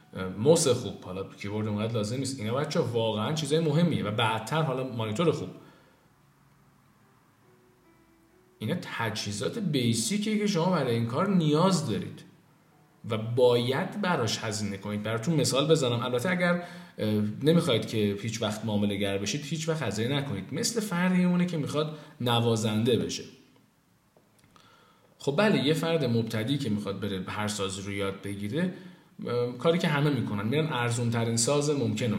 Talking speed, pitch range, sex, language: 140 wpm, 105-155 Hz, male, Persian